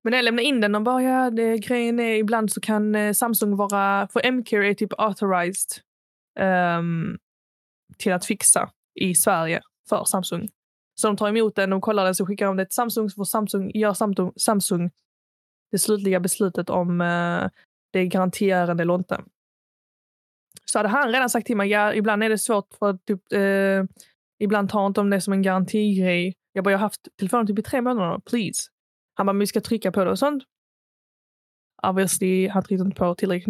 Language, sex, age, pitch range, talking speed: Swedish, female, 20-39, 190-225 Hz, 190 wpm